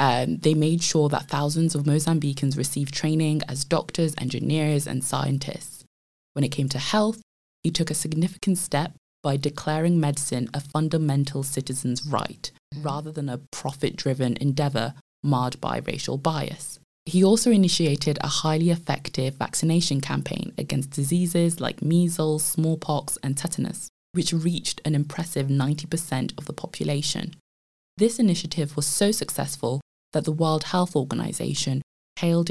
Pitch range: 140-170 Hz